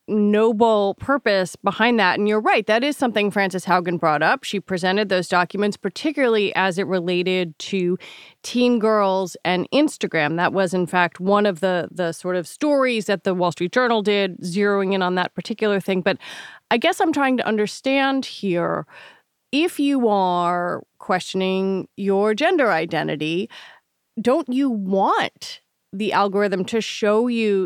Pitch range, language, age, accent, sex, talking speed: 180-225 Hz, English, 30-49, American, female, 160 wpm